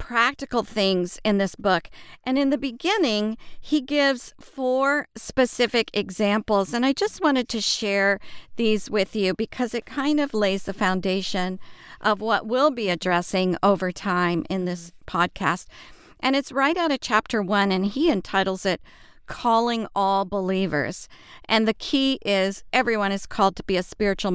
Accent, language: American, English